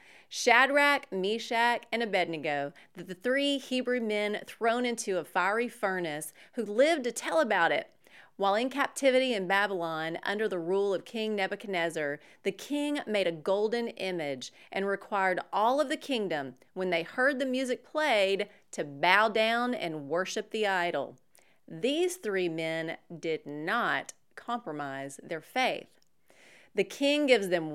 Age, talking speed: 30-49, 145 wpm